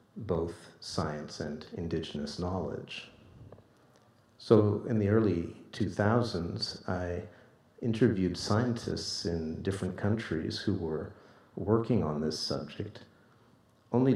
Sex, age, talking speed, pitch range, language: male, 50-69, 100 wpm, 90-110 Hz, English